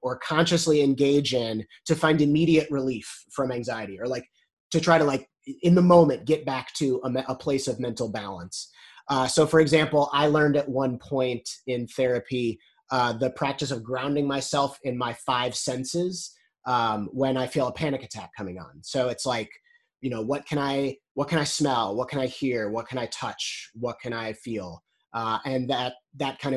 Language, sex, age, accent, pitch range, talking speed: English, male, 30-49, American, 125-150 Hz, 195 wpm